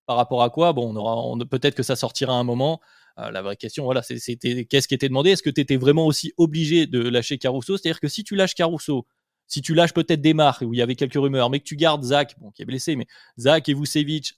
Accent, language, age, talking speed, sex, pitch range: French, French, 20-39, 290 wpm, male, 125-150 Hz